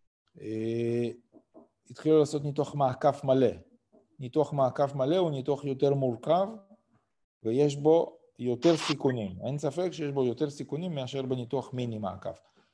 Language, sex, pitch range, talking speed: Hebrew, male, 115-145 Hz, 120 wpm